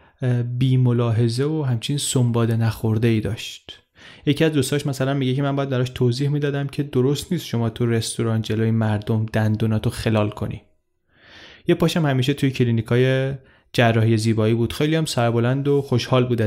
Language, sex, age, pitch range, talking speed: Persian, male, 20-39, 115-140 Hz, 160 wpm